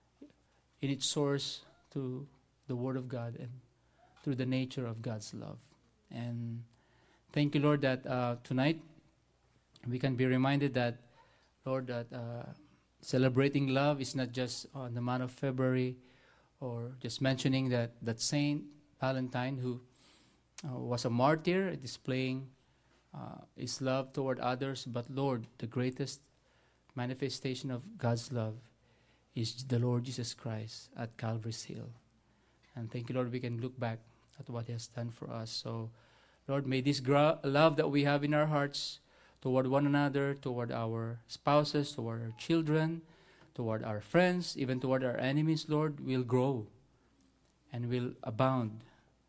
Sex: male